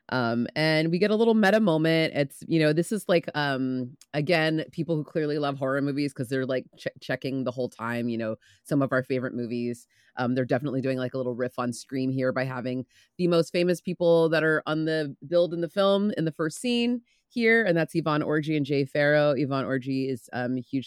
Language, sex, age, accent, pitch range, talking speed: English, female, 30-49, American, 130-160 Hz, 230 wpm